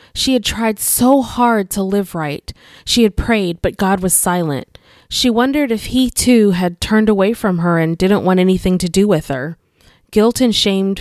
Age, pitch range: 20-39, 180-230 Hz